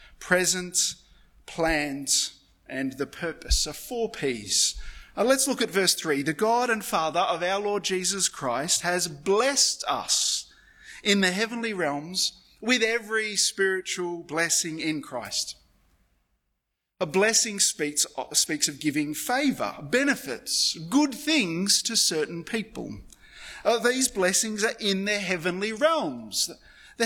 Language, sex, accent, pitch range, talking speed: English, male, Australian, 155-225 Hz, 135 wpm